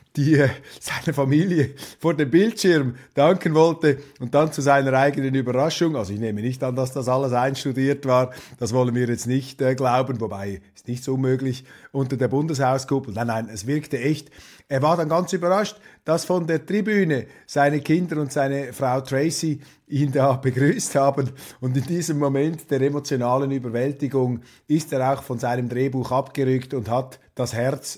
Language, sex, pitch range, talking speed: German, male, 125-150 Hz, 175 wpm